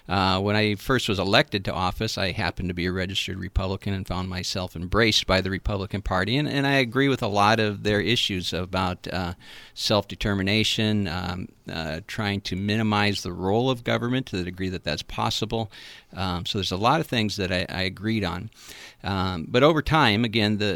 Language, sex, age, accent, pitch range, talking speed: English, male, 50-69, American, 95-120 Hz, 195 wpm